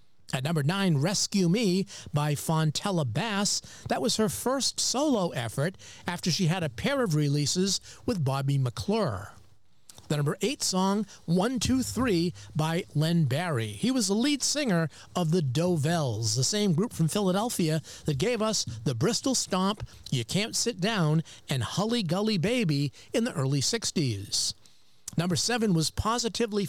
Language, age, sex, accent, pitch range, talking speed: English, 40-59, male, American, 140-210 Hz, 155 wpm